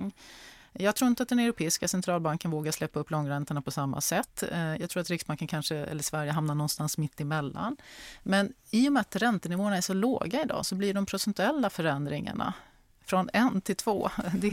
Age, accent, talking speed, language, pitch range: 30-49, native, 180 wpm, Swedish, 150-195 Hz